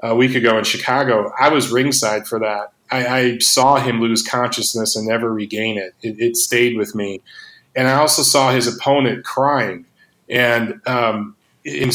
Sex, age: male, 30-49